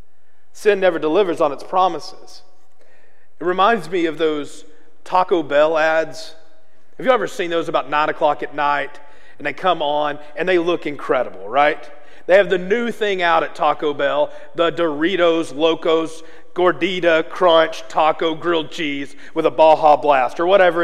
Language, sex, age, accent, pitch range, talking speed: English, male, 40-59, American, 160-265 Hz, 160 wpm